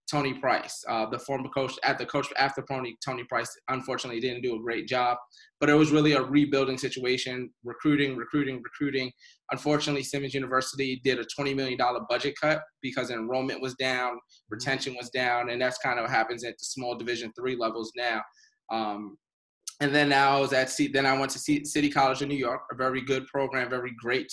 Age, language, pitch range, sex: 20-39, English, 125-140 Hz, male